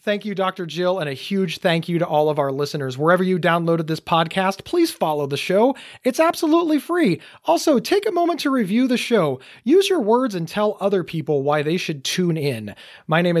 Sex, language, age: male, English, 30-49